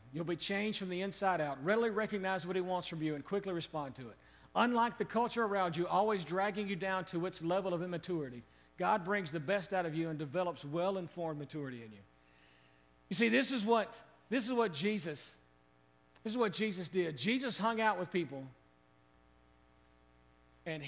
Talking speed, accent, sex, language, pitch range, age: 190 wpm, American, male, English, 125-190 Hz, 50-69